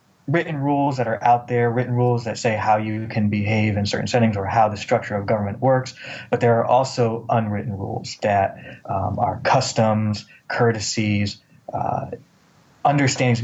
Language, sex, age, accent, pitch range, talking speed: English, male, 20-39, American, 105-120 Hz, 165 wpm